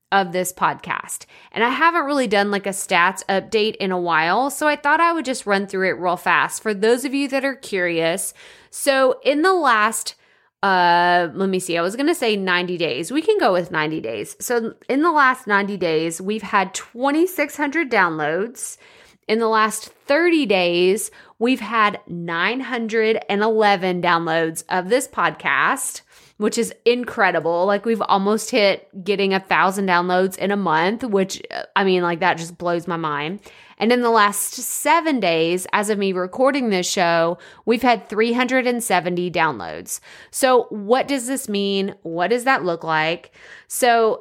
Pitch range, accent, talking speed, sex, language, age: 180-245 Hz, American, 170 wpm, female, English, 20-39